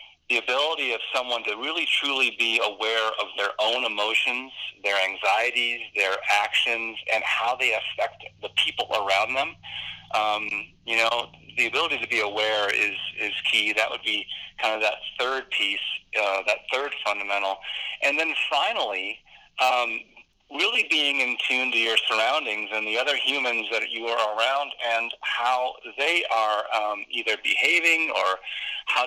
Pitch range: 110-130 Hz